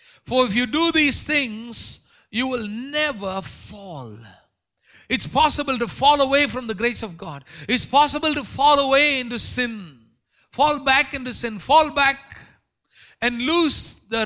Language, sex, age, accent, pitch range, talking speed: English, male, 50-69, Indian, 210-275 Hz, 150 wpm